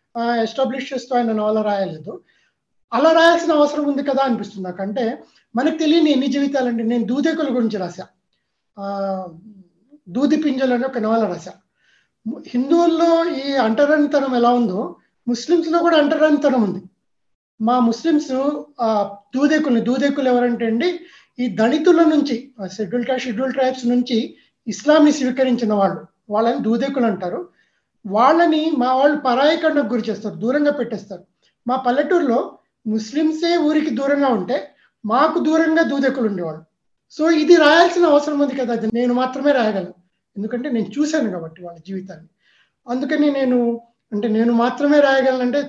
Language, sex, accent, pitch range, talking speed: Telugu, male, native, 220-290 Hz, 125 wpm